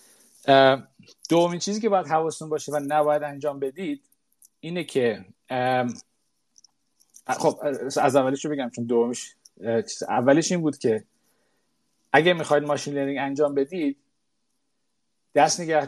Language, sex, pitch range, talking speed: Persian, male, 130-180 Hz, 115 wpm